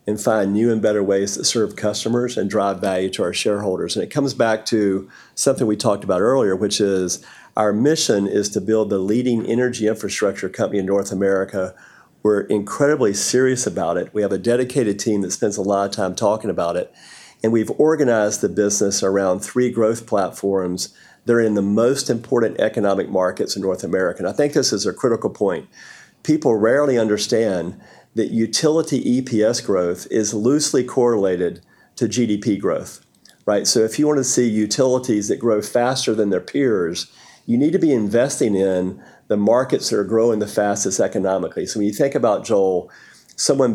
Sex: male